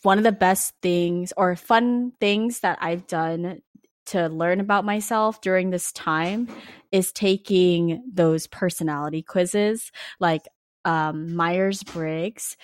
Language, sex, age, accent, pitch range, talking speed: English, female, 20-39, American, 170-220 Hz, 130 wpm